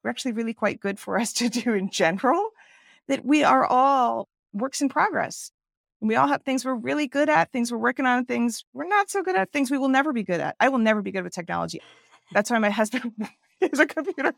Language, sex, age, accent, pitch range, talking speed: English, female, 40-59, American, 200-260 Hz, 240 wpm